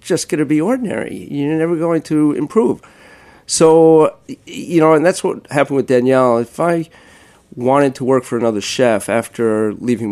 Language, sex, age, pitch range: English, male, 50-69, 110-135 Hz